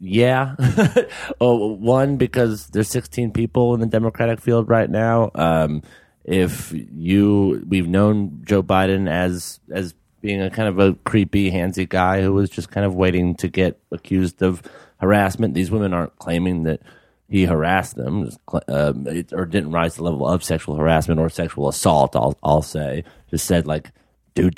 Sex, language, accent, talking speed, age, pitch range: male, English, American, 170 wpm, 30-49, 80-110 Hz